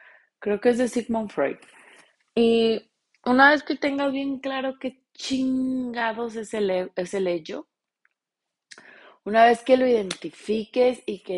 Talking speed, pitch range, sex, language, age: 135 wpm, 170-230 Hz, female, Spanish, 30-49